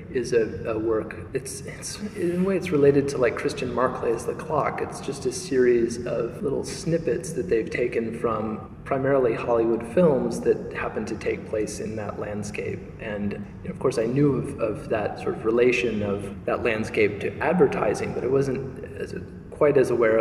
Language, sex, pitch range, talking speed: English, male, 105-130 Hz, 195 wpm